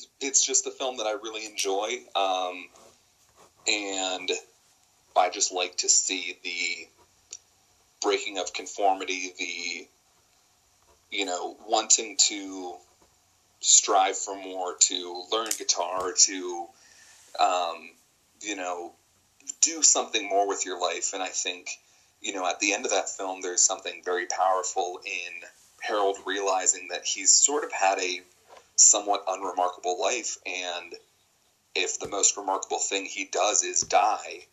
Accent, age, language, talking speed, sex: American, 30-49, English, 135 wpm, male